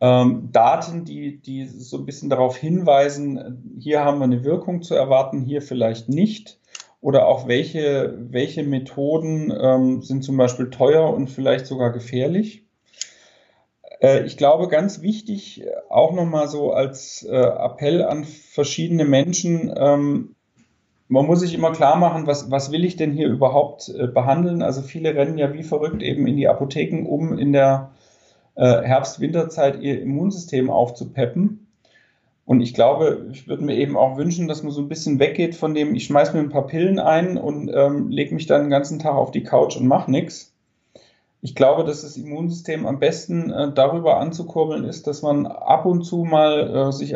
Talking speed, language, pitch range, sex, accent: 175 wpm, German, 135-165 Hz, male, German